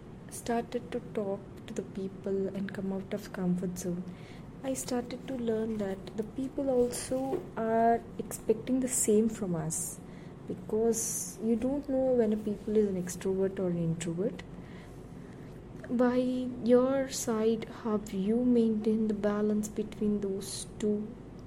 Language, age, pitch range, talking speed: English, 20-39, 190-230 Hz, 135 wpm